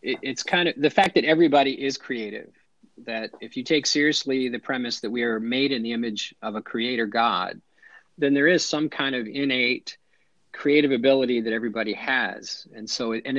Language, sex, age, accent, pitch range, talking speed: English, male, 40-59, American, 115-145 Hz, 190 wpm